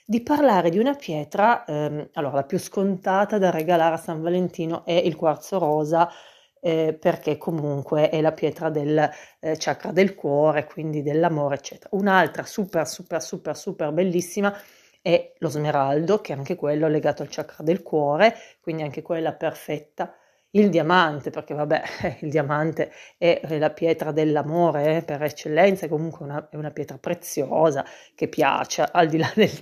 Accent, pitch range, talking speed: native, 150-180 Hz, 160 wpm